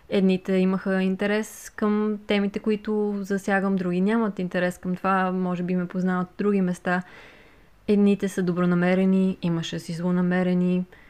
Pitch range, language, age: 180-205 Hz, Bulgarian, 20-39